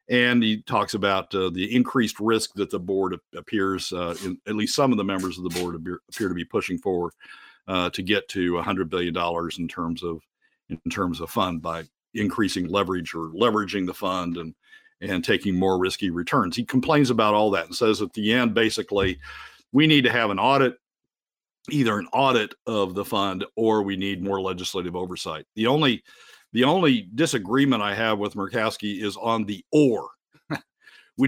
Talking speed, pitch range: 195 wpm, 90-115 Hz